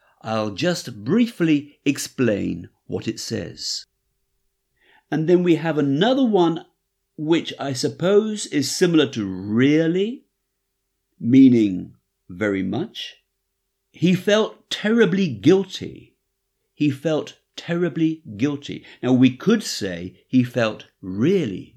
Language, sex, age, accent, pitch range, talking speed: English, male, 60-79, British, 110-165 Hz, 105 wpm